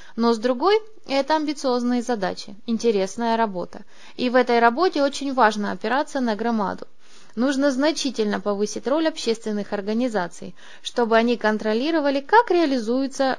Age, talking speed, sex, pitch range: 20-39, 125 wpm, female, 210-275 Hz